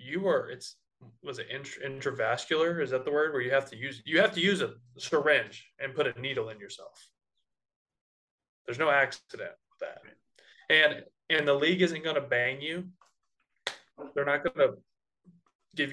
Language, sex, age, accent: English, male, 20-39, American